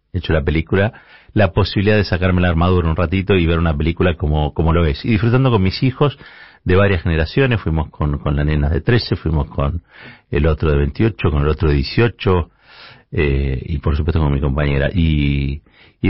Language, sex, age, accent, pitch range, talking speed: Spanish, male, 50-69, Argentinian, 80-115 Hz, 200 wpm